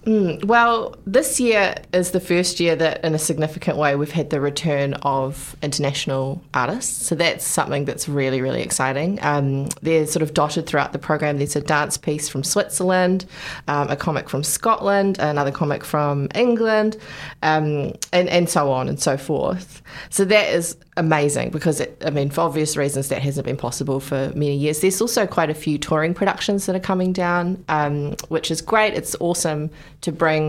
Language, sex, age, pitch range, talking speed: English, female, 20-39, 145-175 Hz, 185 wpm